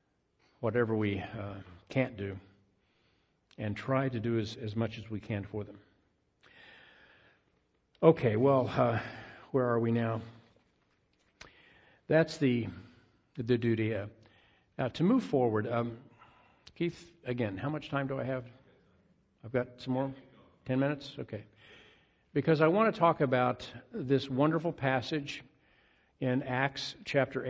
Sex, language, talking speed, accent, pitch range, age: male, English, 140 wpm, American, 115-140 Hz, 50-69